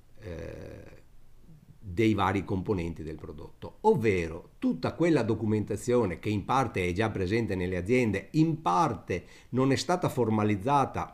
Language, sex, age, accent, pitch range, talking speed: Italian, male, 50-69, native, 105-150 Hz, 125 wpm